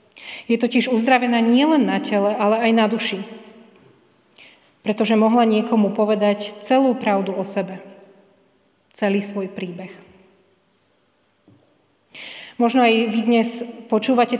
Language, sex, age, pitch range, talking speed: Slovak, female, 40-59, 195-230 Hz, 115 wpm